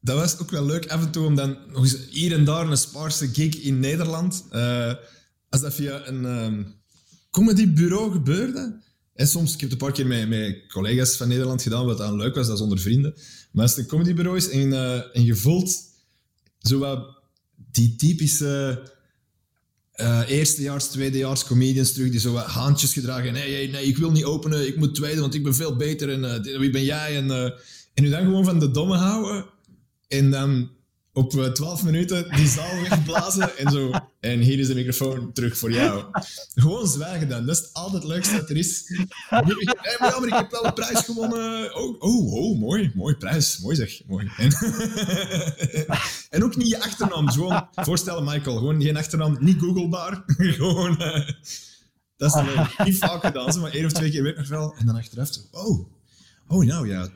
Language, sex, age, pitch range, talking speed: Dutch, male, 20-39, 130-170 Hz, 200 wpm